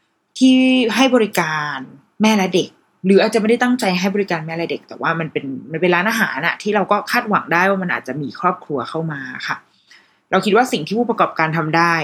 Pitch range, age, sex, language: 165-215 Hz, 20-39, female, Thai